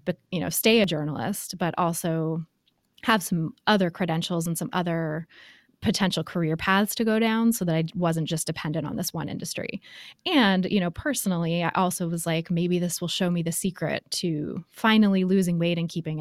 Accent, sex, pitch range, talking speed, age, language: American, female, 165-190 Hz, 195 wpm, 20-39, English